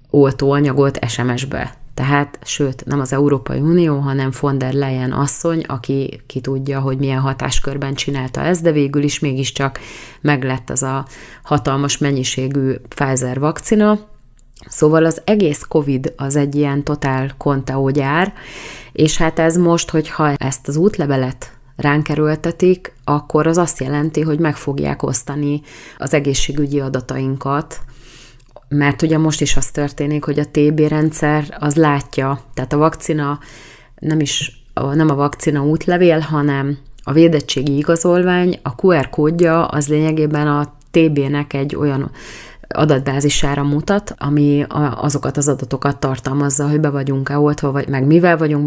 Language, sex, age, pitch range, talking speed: Hungarian, female, 30-49, 135-155 Hz, 135 wpm